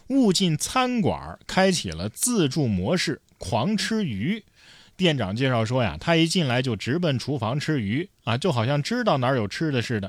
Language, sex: Chinese, male